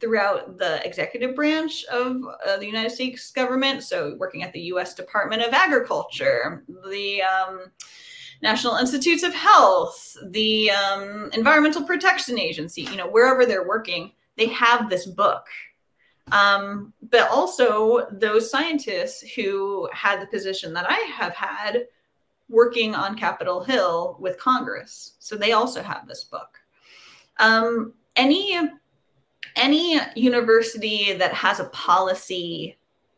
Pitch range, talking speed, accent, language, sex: 205-295 Hz, 130 wpm, American, English, female